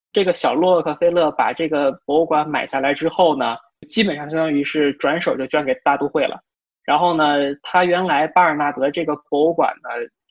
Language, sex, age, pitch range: Chinese, male, 20-39, 140-175 Hz